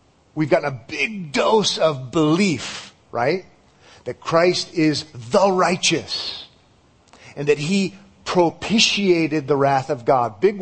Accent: American